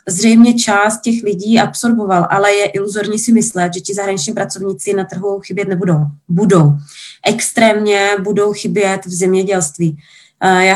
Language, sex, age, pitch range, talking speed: Czech, female, 20-39, 190-215 Hz, 140 wpm